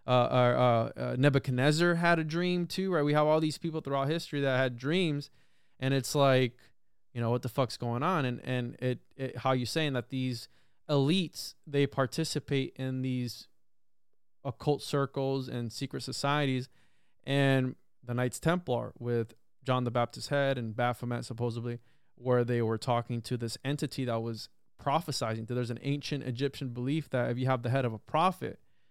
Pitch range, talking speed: 125-155 Hz, 180 wpm